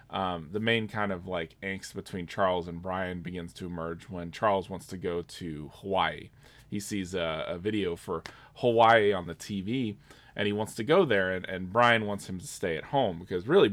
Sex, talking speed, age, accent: male, 210 wpm, 20-39, American